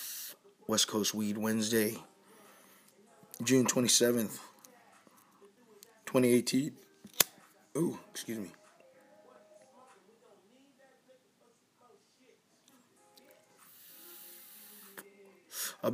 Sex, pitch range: male, 110-130 Hz